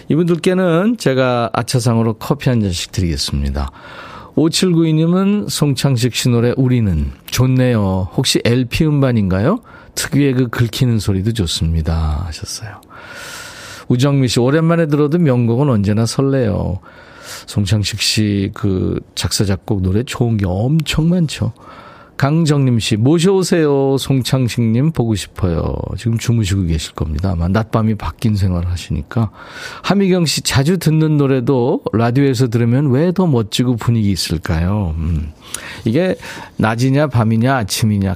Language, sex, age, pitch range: Korean, male, 40-59, 105-160 Hz